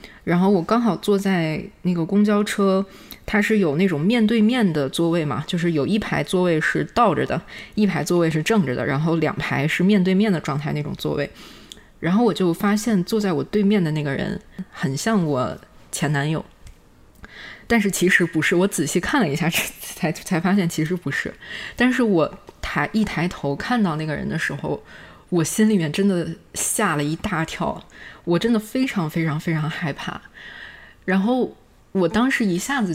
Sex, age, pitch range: female, 20-39, 155-195 Hz